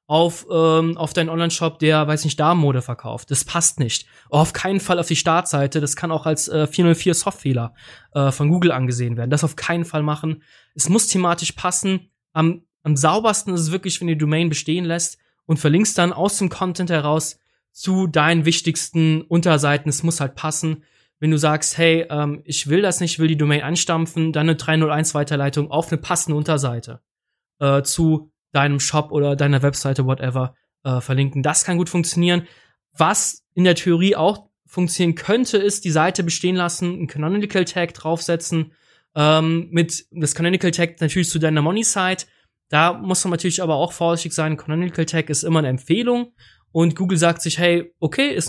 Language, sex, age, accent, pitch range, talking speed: German, male, 20-39, German, 150-175 Hz, 180 wpm